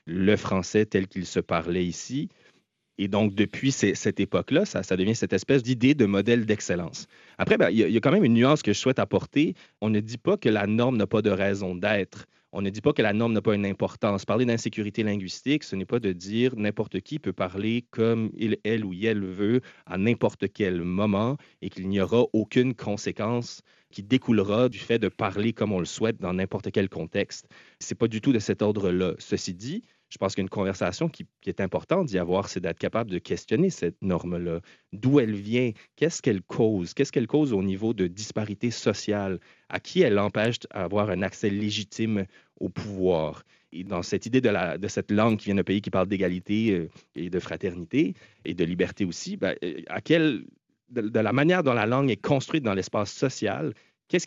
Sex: male